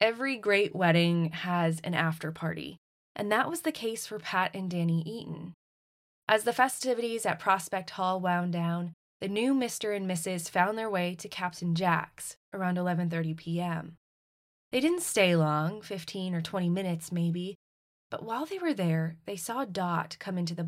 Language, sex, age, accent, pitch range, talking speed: English, female, 20-39, American, 170-205 Hz, 170 wpm